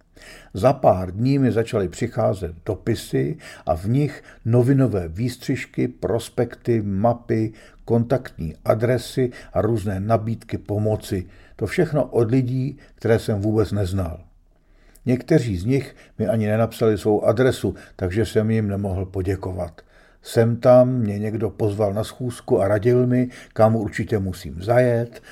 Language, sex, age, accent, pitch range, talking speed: Czech, male, 50-69, native, 100-125 Hz, 130 wpm